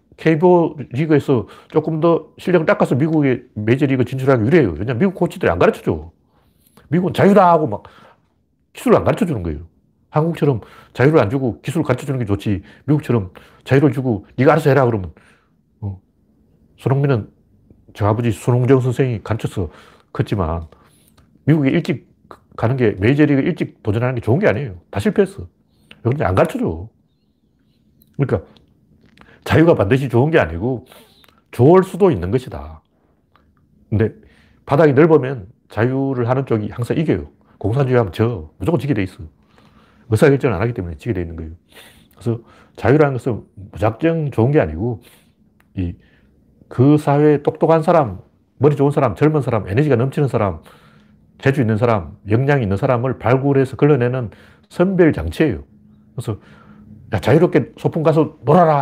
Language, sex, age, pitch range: Korean, male, 40-59, 105-150 Hz